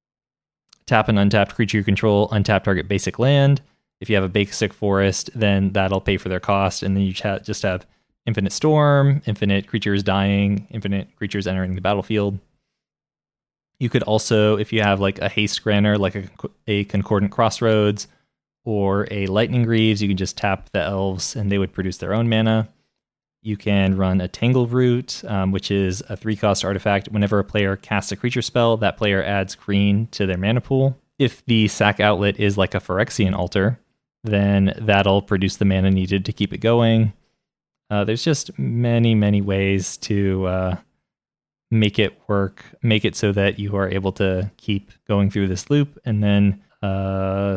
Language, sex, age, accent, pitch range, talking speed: English, male, 20-39, American, 100-110 Hz, 180 wpm